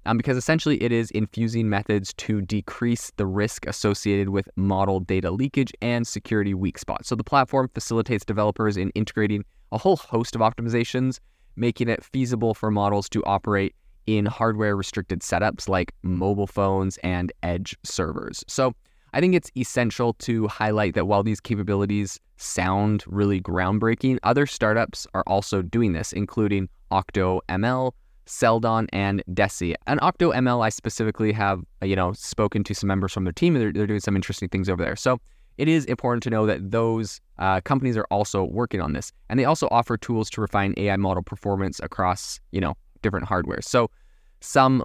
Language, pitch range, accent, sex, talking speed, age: English, 95-115 Hz, American, male, 175 wpm, 20-39